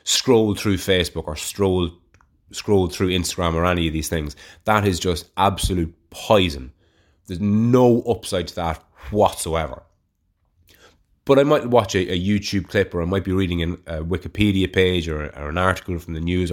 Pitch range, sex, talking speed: 90-120 Hz, male, 175 wpm